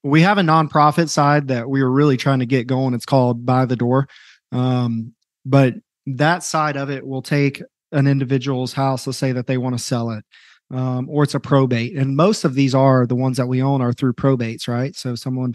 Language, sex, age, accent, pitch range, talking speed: English, male, 30-49, American, 125-145 Hz, 225 wpm